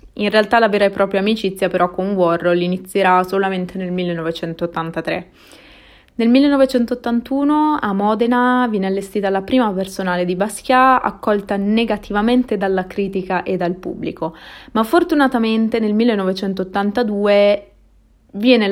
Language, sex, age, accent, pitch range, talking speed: Italian, female, 20-39, native, 185-225 Hz, 120 wpm